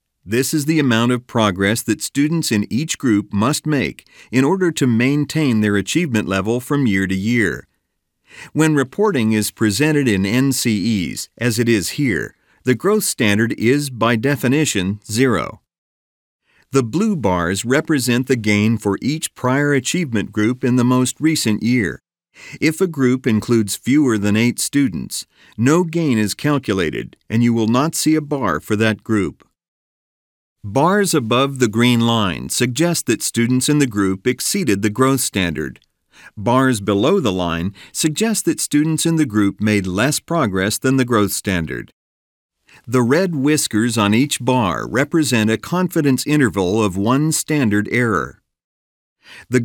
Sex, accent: male, American